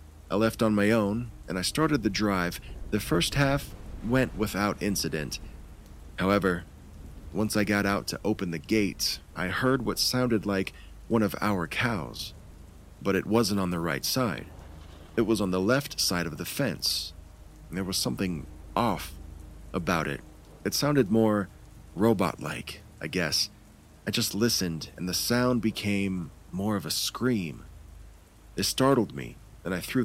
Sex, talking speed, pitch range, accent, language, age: male, 160 wpm, 80-105 Hz, American, English, 40-59